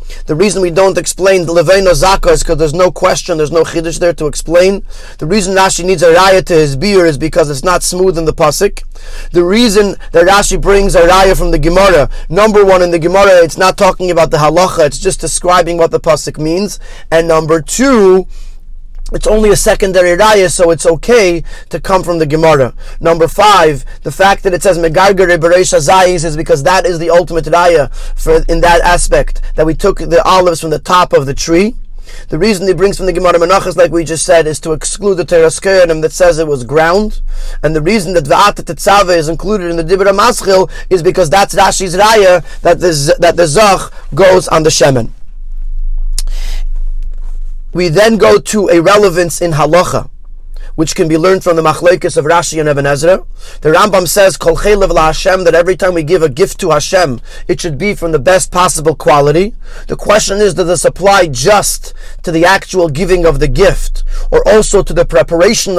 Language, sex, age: English, male, 30-49